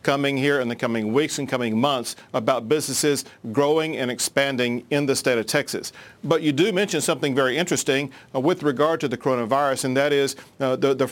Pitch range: 130-155 Hz